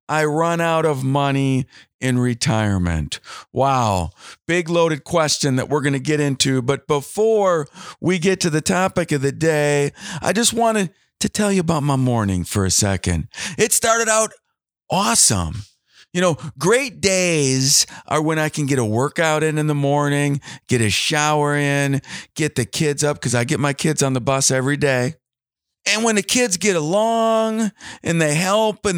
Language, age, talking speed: English, 50-69, 180 wpm